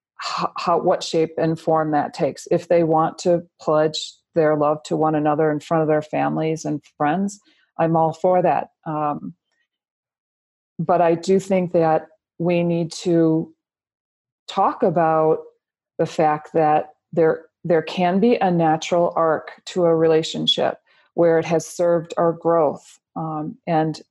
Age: 40-59